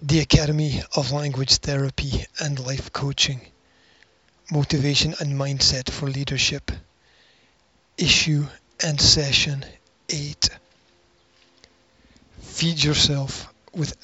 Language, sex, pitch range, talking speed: English, male, 130-150 Hz, 85 wpm